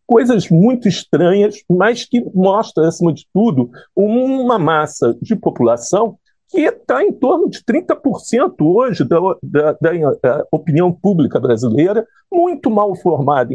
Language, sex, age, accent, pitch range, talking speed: Portuguese, male, 50-69, Brazilian, 150-220 Hz, 130 wpm